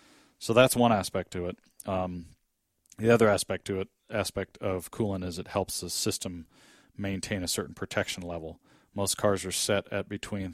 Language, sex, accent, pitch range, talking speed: English, male, American, 90-105 Hz, 175 wpm